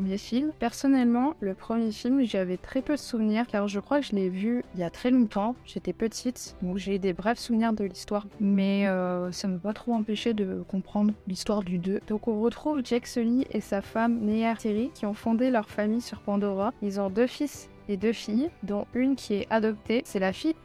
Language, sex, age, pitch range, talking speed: French, female, 20-39, 195-230 Hz, 220 wpm